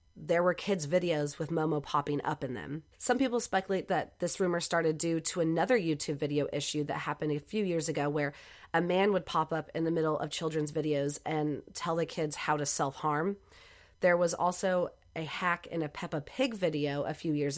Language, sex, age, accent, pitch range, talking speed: English, female, 30-49, American, 150-185 Hz, 210 wpm